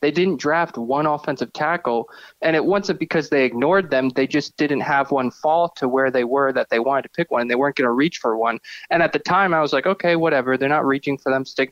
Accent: American